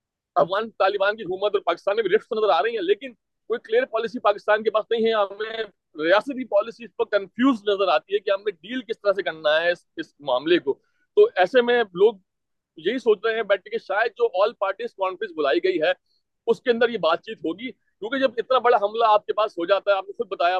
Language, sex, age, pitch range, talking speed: Urdu, male, 40-59, 190-255 Hz, 145 wpm